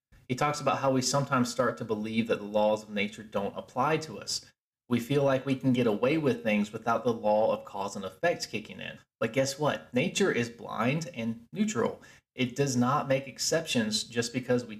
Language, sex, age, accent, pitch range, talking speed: English, male, 30-49, American, 110-150 Hz, 210 wpm